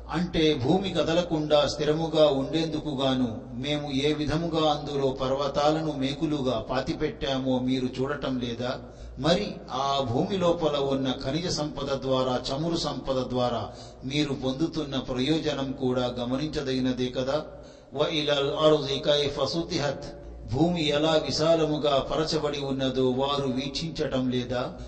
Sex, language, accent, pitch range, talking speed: male, Telugu, native, 130-155 Hz, 105 wpm